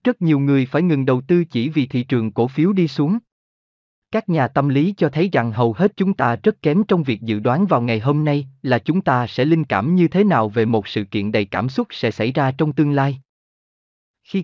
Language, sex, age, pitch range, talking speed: Vietnamese, male, 30-49, 115-165 Hz, 245 wpm